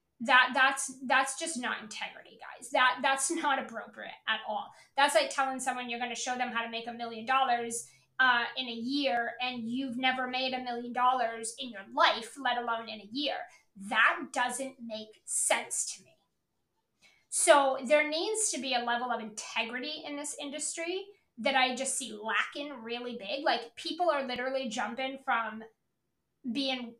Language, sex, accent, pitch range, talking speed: English, female, American, 240-290 Hz, 175 wpm